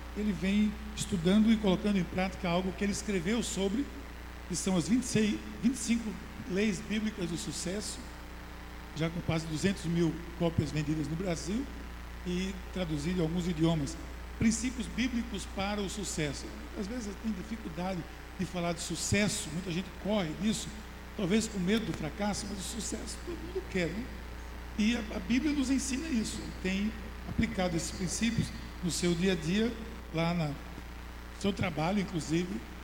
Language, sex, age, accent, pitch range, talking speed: Portuguese, male, 60-79, Brazilian, 160-210 Hz, 155 wpm